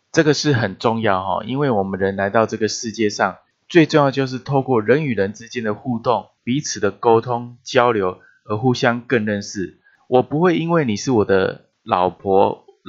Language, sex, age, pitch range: Chinese, male, 20-39, 105-130 Hz